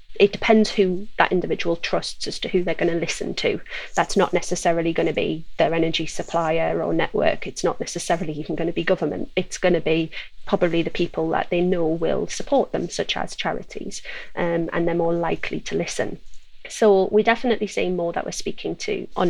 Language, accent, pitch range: English, British, 170-195 Hz